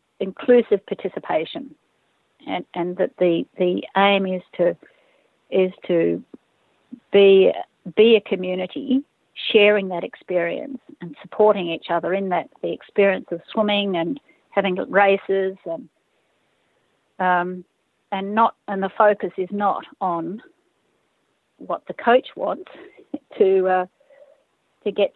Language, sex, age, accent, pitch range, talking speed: English, female, 50-69, Australian, 180-205 Hz, 120 wpm